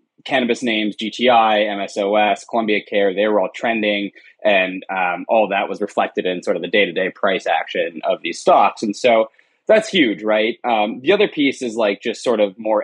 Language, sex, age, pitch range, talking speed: English, male, 20-39, 105-155 Hz, 200 wpm